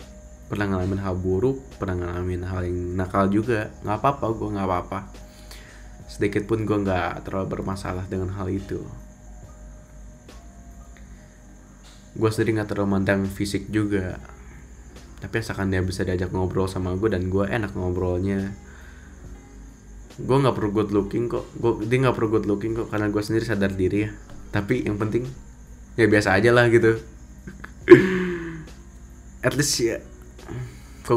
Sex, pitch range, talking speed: male, 90-115 Hz, 140 wpm